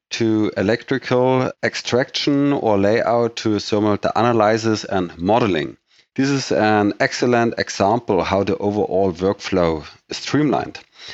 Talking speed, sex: 120 wpm, male